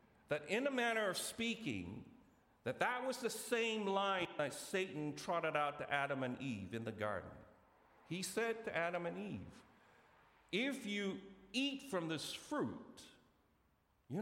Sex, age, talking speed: male, 50-69, 150 wpm